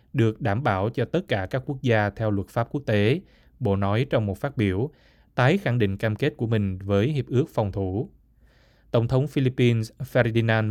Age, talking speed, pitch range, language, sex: 20-39, 200 wpm, 105-125 Hz, Vietnamese, male